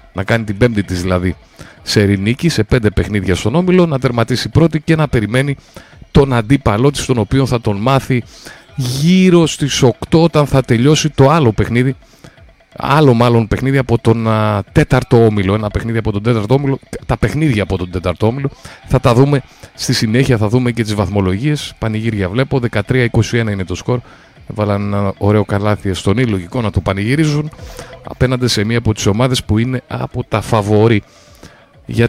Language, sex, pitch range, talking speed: Greek, male, 105-135 Hz, 175 wpm